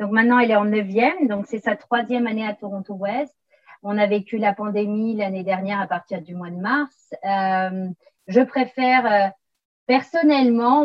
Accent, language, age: French, French, 40-59